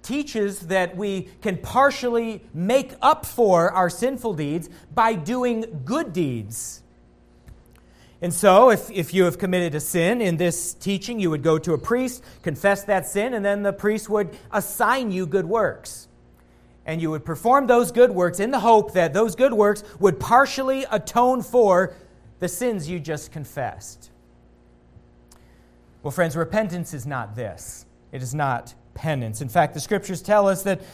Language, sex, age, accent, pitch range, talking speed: English, male, 40-59, American, 155-225 Hz, 165 wpm